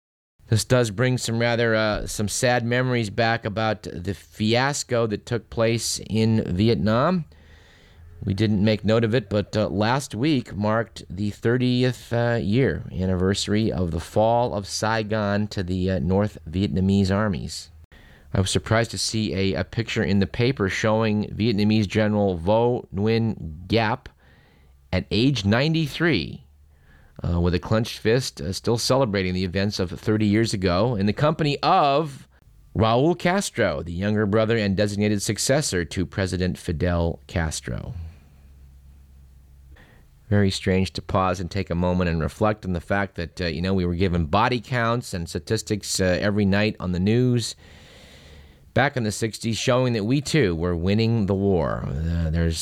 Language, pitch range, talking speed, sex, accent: English, 90-110 Hz, 160 wpm, male, American